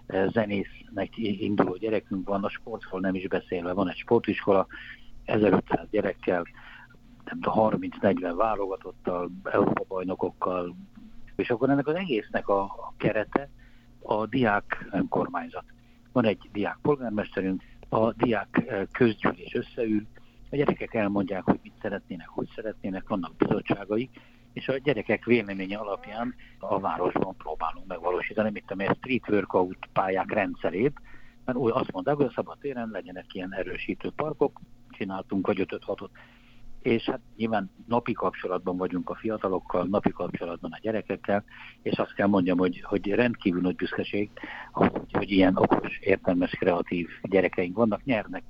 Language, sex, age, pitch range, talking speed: Hungarian, male, 60-79, 95-120 Hz, 135 wpm